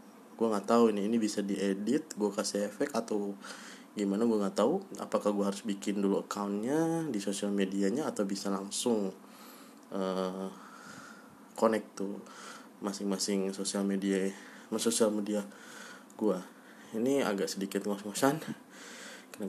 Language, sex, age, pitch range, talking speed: Indonesian, male, 20-39, 95-115 Hz, 130 wpm